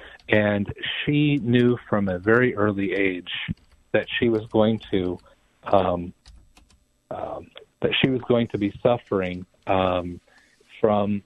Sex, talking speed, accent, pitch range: male, 130 wpm, American, 90-110 Hz